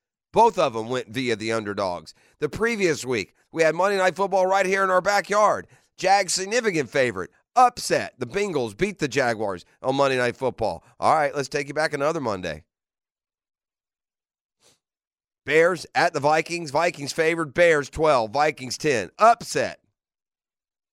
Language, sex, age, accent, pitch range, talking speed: English, male, 40-59, American, 130-165 Hz, 150 wpm